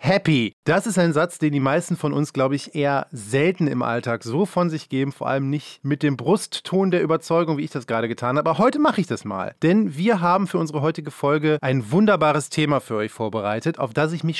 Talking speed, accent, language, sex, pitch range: 240 wpm, German, German, male, 130-175 Hz